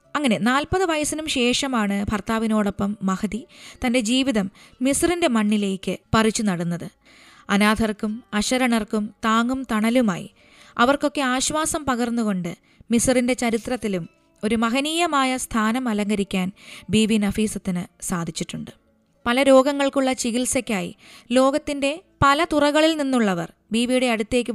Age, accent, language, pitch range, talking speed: 20-39, native, Malayalam, 210-260 Hz, 90 wpm